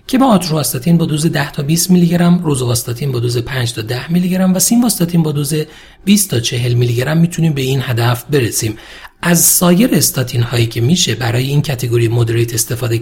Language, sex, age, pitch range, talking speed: Persian, male, 40-59, 120-170 Hz, 190 wpm